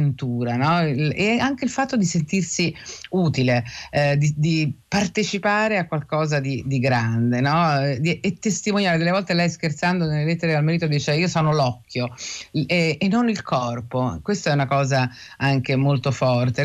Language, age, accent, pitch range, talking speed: Italian, 30-49, native, 135-170 Hz, 160 wpm